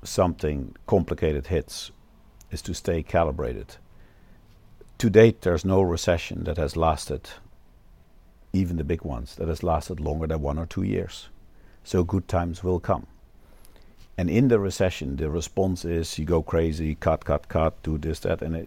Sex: male